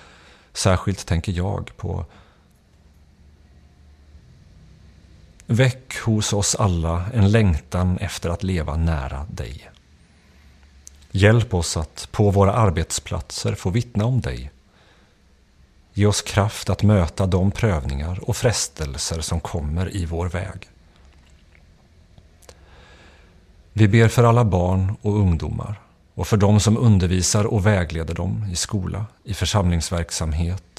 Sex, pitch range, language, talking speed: male, 80-105 Hz, Swedish, 115 wpm